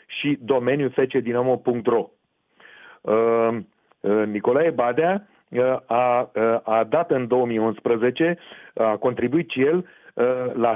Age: 40-59